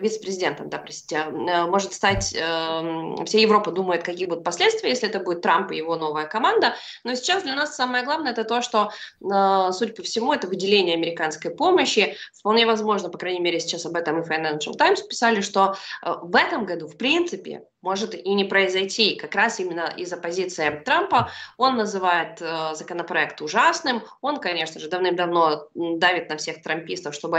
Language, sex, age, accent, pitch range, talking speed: Russian, female, 20-39, native, 170-230 Hz, 175 wpm